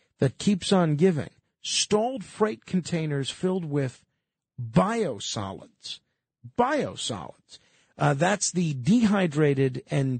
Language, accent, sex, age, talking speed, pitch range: English, American, male, 50-69, 95 wpm, 140-195 Hz